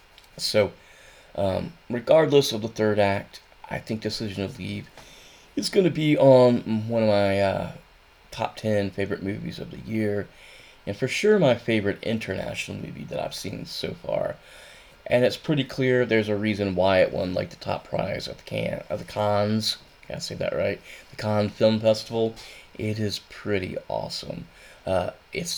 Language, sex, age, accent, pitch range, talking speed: English, male, 20-39, American, 100-115 Hz, 180 wpm